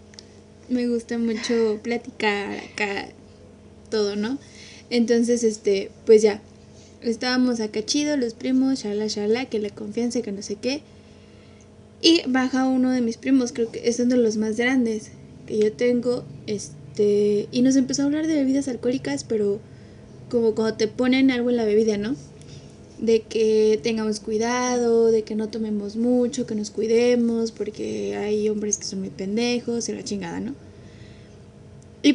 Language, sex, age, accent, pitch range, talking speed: Spanish, female, 20-39, Mexican, 215-255 Hz, 160 wpm